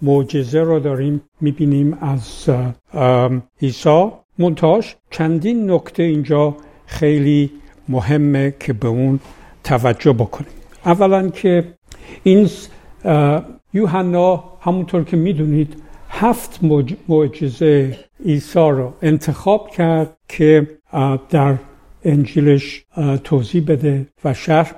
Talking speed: 90 wpm